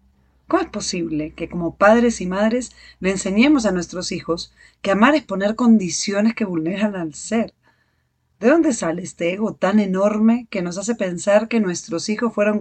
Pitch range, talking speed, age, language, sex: 165-225 Hz, 175 wpm, 30-49, Spanish, female